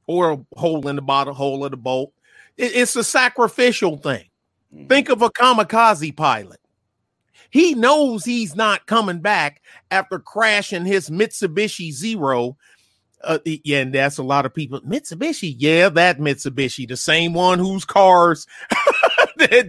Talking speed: 145 wpm